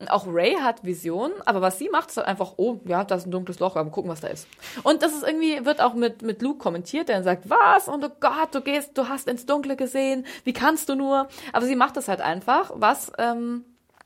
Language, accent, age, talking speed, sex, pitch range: German, German, 20-39, 250 wpm, female, 180-260 Hz